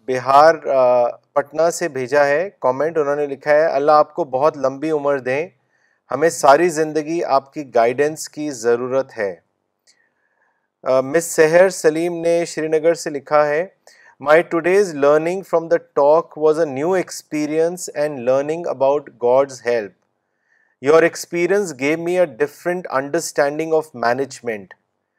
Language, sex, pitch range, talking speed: Urdu, male, 140-170 Hz, 135 wpm